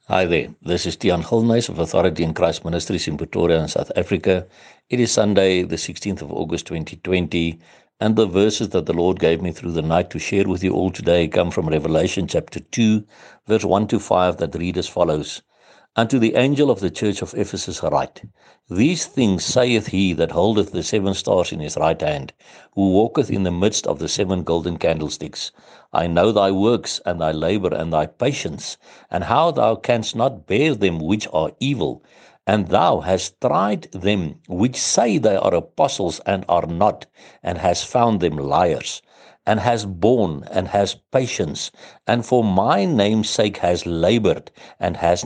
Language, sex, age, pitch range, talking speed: English, male, 60-79, 85-110 Hz, 185 wpm